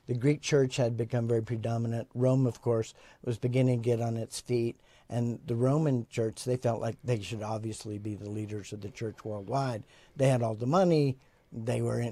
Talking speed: 205 wpm